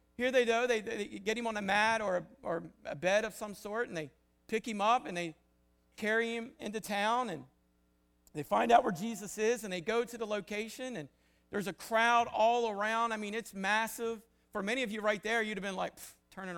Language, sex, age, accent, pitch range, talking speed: English, male, 50-69, American, 180-235 Hz, 230 wpm